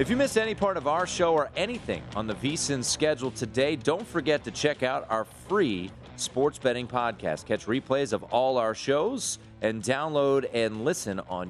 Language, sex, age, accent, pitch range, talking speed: English, male, 30-49, American, 105-155 Hz, 190 wpm